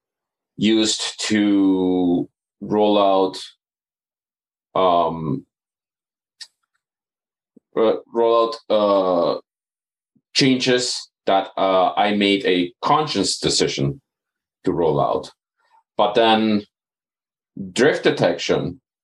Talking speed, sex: 70 wpm, male